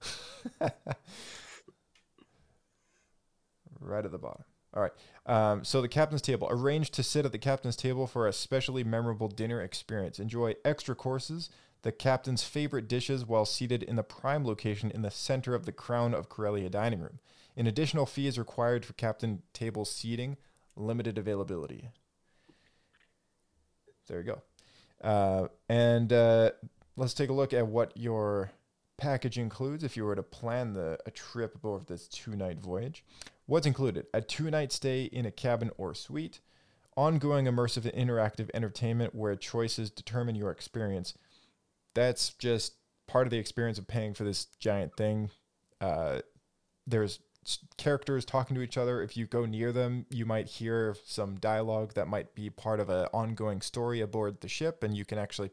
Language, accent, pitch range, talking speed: English, American, 105-130 Hz, 160 wpm